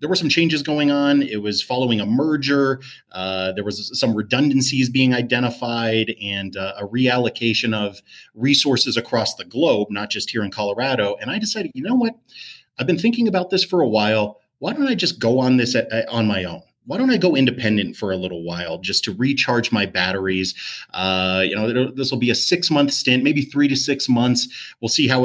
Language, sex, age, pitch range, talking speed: English, male, 30-49, 105-130 Hz, 210 wpm